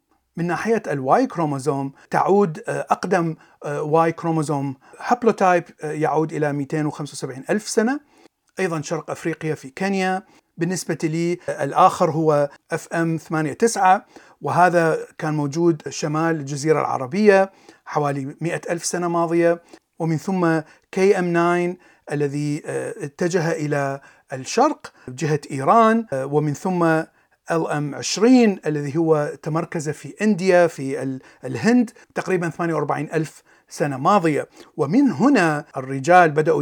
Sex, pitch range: male, 150-185 Hz